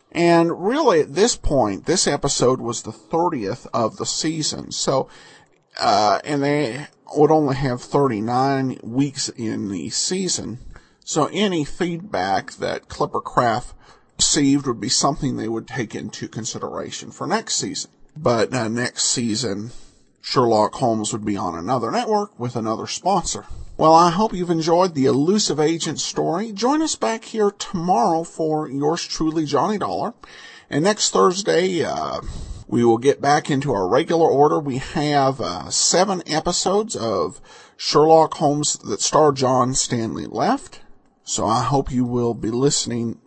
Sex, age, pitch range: male, 50-69, 125-170 Hz